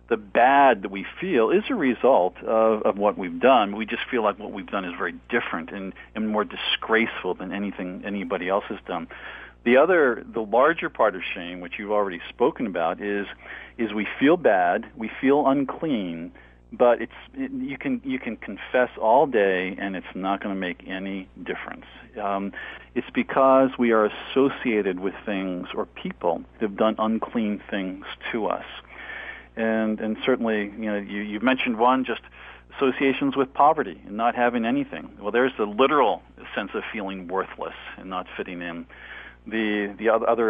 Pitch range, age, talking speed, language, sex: 100-120 Hz, 40-59, 180 wpm, English, male